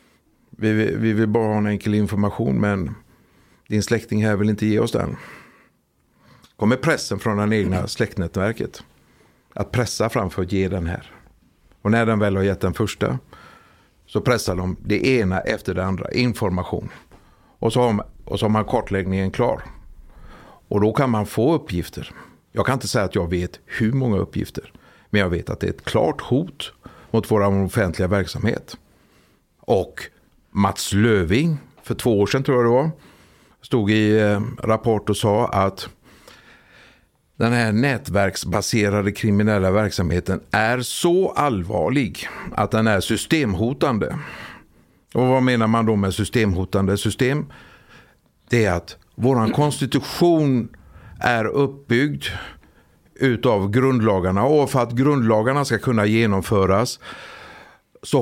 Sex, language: male, Swedish